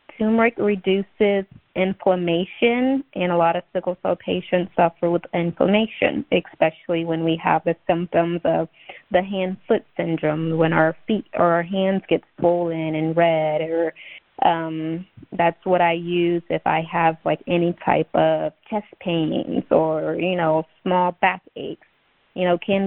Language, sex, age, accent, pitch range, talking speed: English, female, 20-39, American, 170-210 Hz, 150 wpm